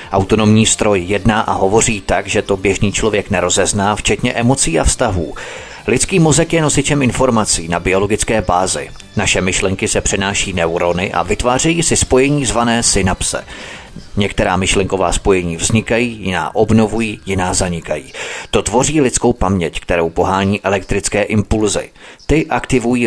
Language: Czech